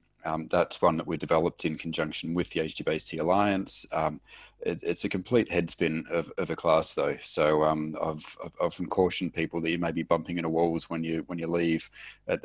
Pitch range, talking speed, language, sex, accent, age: 80-90 Hz, 210 wpm, English, male, Australian, 30-49